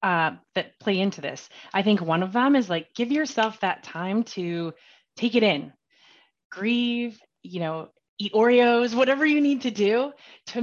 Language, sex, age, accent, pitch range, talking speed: English, female, 20-39, American, 180-245 Hz, 175 wpm